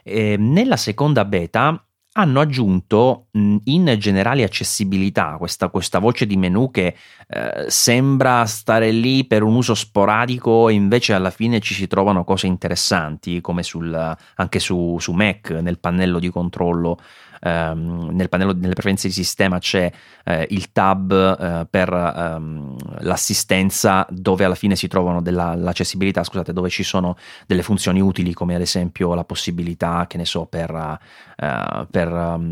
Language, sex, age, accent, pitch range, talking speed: Italian, male, 30-49, native, 85-110 Hz, 145 wpm